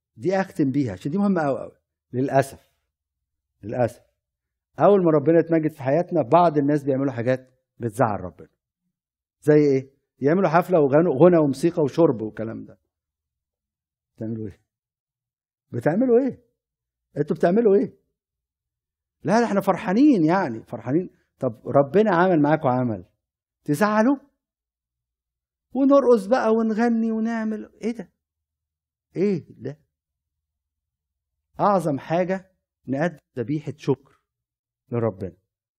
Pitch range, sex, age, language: 110-165 Hz, male, 50-69, Arabic